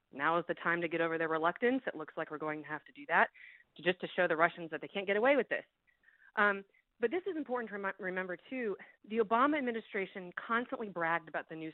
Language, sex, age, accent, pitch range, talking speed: English, female, 30-49, American, 165-210 Hz, 240 wpm